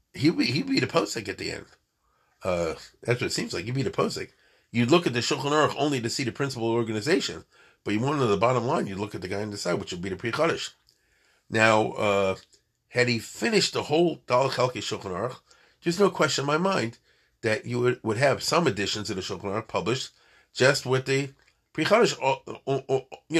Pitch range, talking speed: 105-135 Hz, 225 wpm